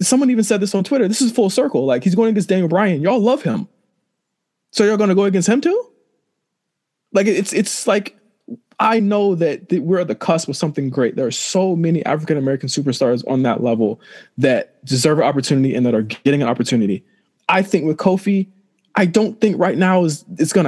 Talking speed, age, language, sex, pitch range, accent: 210 wpm, 20-39, English, male, 165-220 Hz, American